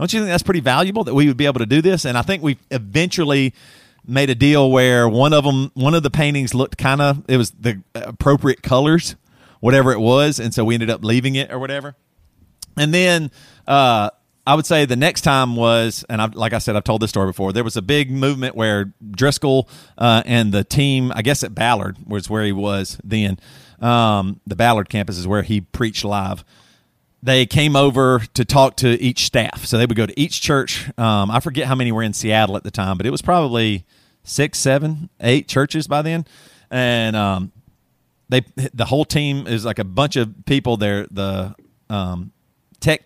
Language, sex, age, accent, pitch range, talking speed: English, male, 40-59, American, 110-140 Hz, 210 wpm